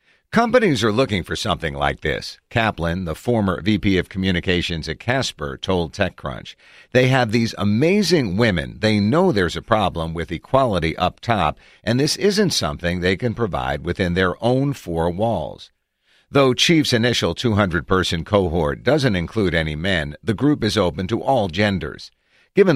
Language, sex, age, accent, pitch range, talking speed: English, male, 50-69, American, 85-120 Hz, 160 wpm